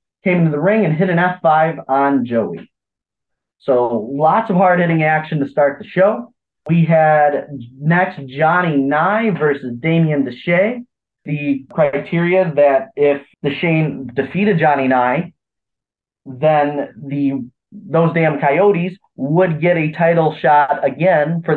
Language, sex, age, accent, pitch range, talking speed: English, male, 30-49, American, 140-170 Hz, 130 wpm